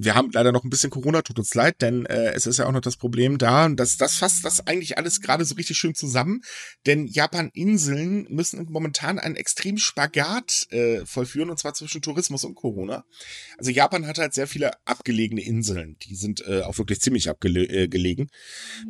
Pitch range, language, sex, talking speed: 110-150 Hz, German, male, 200 wpm